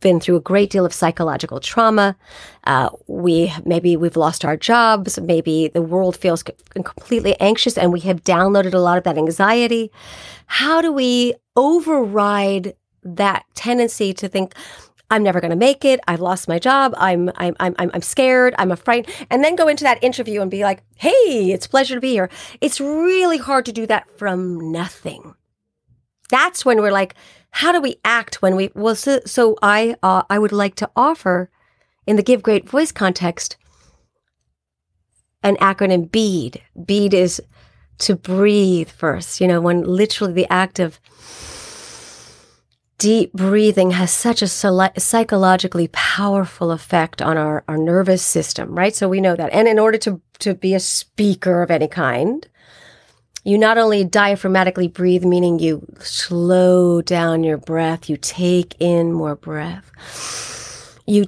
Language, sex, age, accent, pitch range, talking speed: English, female, 40-59, American, 175-215 Hz, 165 wpm